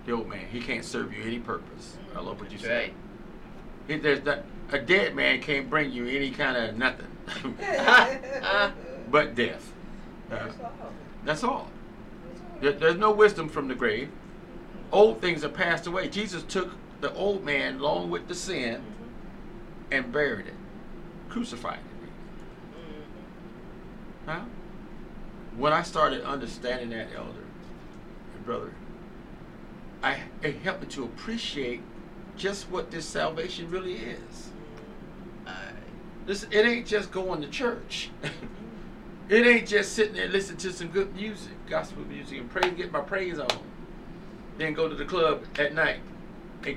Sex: male